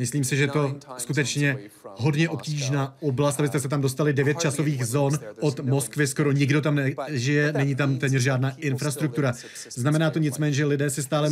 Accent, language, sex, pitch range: native, Czech, male, 130-150 Hz